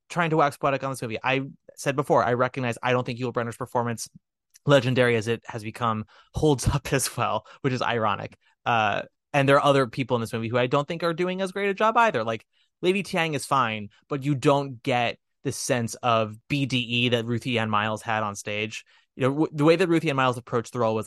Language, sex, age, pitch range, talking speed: English, male, 20-39, 115-155 Hz, 235 wpm